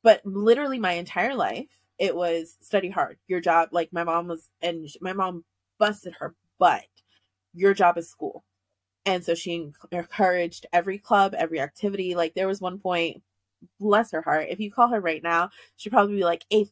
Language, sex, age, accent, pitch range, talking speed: English, female, 20-39, American, 170-220 Hz, 185 wpm